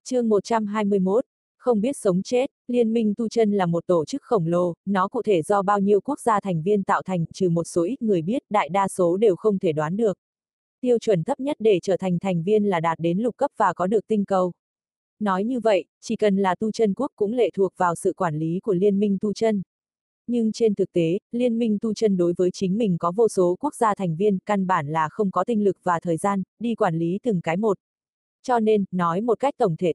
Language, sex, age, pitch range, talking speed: Vietnamese, female, 20-39, 185-230 Hz, 250 wpm